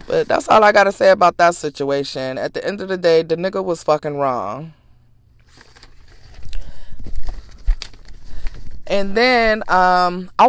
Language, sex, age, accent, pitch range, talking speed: English, female, 20-39, American, 150-210 Hz, 145 wpm